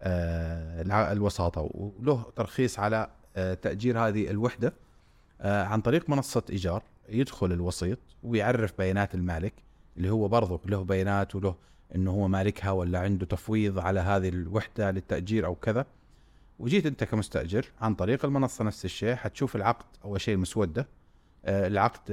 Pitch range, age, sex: 95-110 Hz, 30-49, male